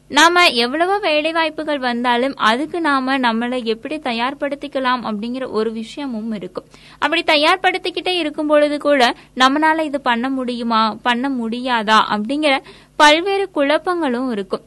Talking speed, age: 120 wpm, 20-39